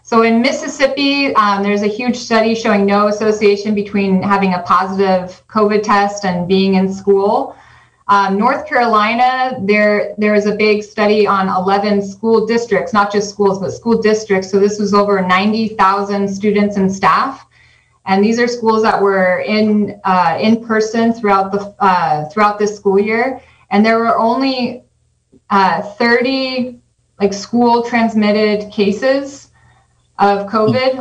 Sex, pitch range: female, 195-225 Hz